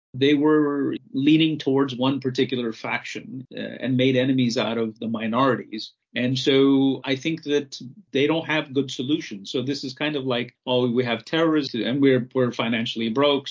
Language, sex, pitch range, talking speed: English, male, 120-140 Hz, 180 wpm